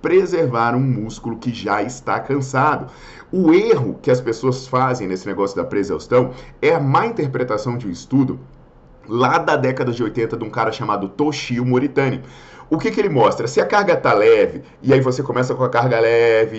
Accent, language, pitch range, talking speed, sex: Brazilian, Portuguese, 125-170 Hz, 190 wpm, male